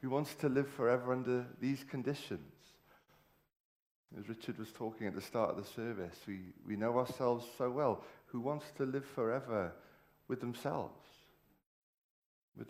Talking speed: 150 wpm